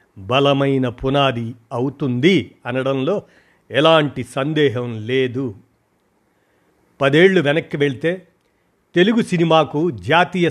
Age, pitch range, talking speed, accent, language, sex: 50-69, 130-165 Hz, 75 wpm, native, Telugu, male